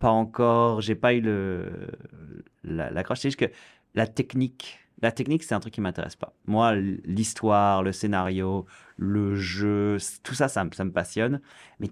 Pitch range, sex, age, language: 95-115 Hz, male, 30-49, French